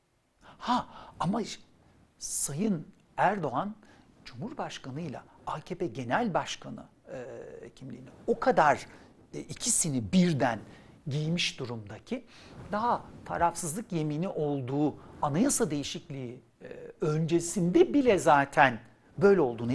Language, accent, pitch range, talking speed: Turkish, native, 125-190 Hz, 95 wpm